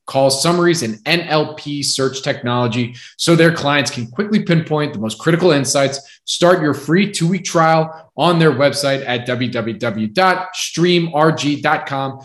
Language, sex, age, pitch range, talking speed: English, male, 20-39, 125-155 Hz, 125 wpm